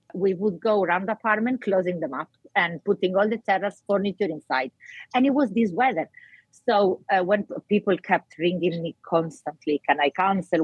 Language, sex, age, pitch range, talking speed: English, female, 30-49, 170-215 Hz, 180 wpm